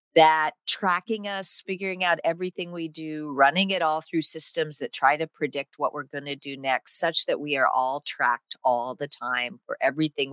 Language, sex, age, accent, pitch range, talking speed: French, female, 40-59, American, 130-170 Hz, 200 wpm